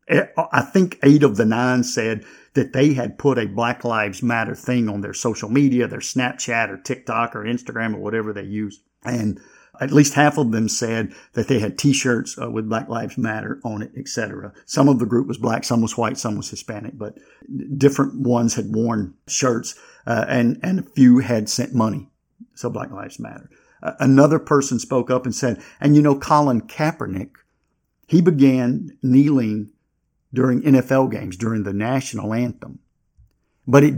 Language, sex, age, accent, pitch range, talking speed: English, male, 50-69, American, 115-135 Hz, 175 wpm